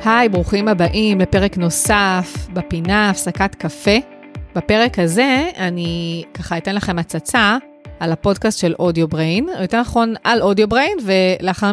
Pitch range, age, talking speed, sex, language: 175-230 Hz, 30-49, 125 wpm, female, Hebrew